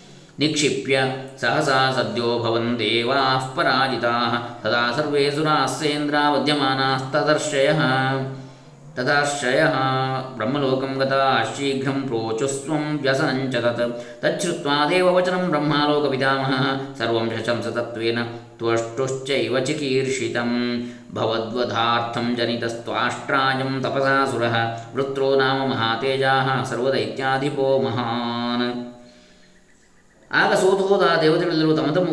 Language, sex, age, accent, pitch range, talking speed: Kannada, male, 20-39, native, 120-150 Hz, 45 wpm